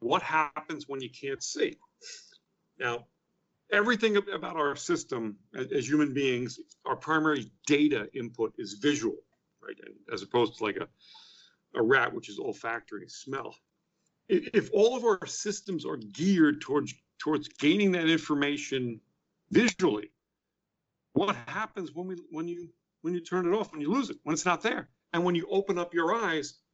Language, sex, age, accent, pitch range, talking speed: English, male, 50-69, American, 150-210 Hz, 160 wpm